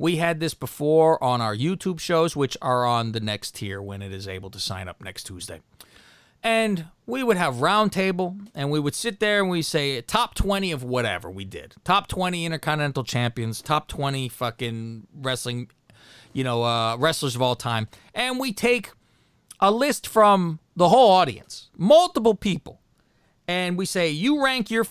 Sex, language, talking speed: male, English, 180 wpm